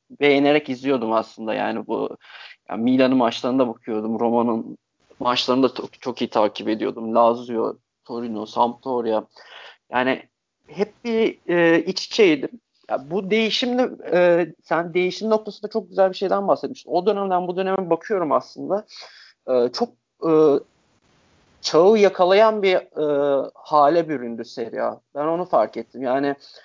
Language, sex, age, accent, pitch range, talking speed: Turkish, male, 40-59, native, 125-175 Hz, 130 wpm